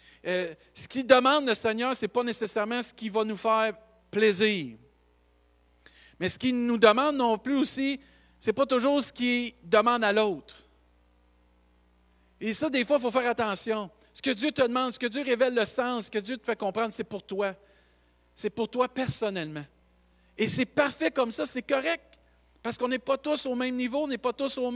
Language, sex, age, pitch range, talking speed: French, male, 50-69, 180-255 Hz, 205 wpm